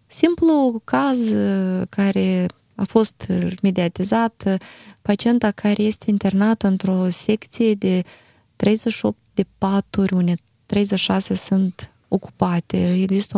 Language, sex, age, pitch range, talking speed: Romanian, female, 20-39, 185-230 Hz, 95 wpm